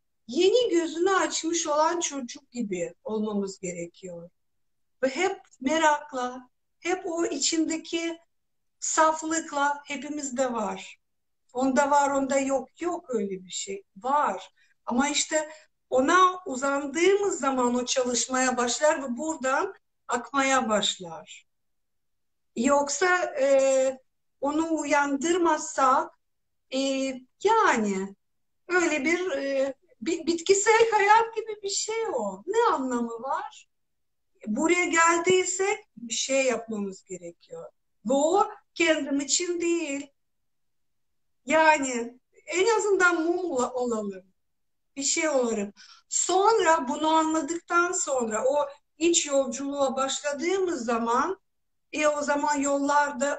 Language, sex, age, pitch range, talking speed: Turkish, female, 60-79, 255-340 Hz, 100 wpm